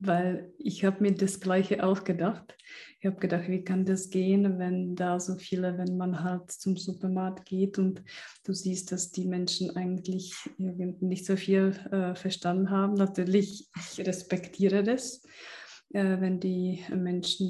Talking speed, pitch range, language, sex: 150 wpm, 185-195 Hz, German, female